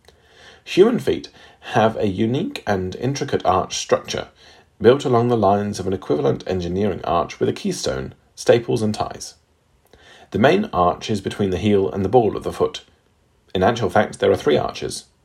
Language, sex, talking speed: English, male, 175 wpm